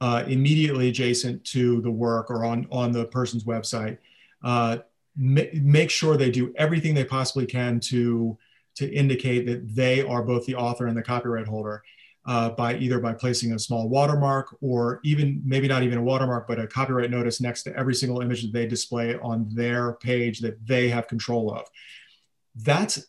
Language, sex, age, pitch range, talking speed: English, male, 30-49, 120-140 Hz, 185 wpm